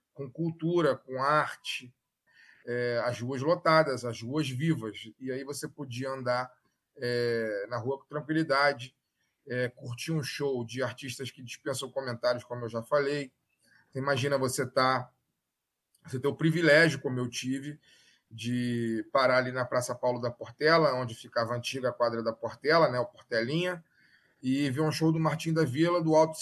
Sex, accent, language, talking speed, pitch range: male, Brazilian, Portuguese, 155 wpm, 125-160 Hz